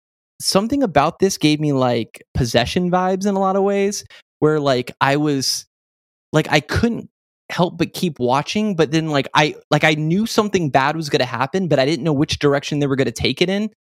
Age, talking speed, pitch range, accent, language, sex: 10-29, 215 wpm, 130-170 Hz, American, English, male